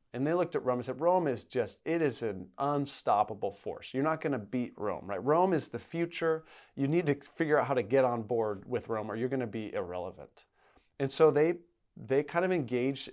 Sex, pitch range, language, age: male, 120-150 Hz, English, 40-59